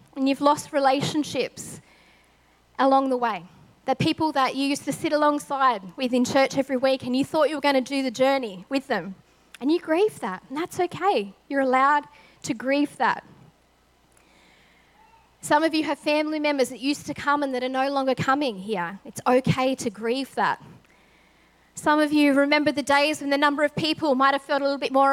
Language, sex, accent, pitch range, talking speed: English, female, Australian, 220-285 Hz, 200 wpm